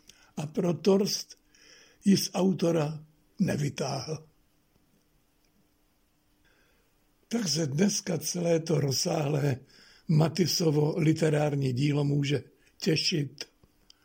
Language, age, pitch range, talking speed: Czech, 60-79, 140-170 Hz, 75 wpm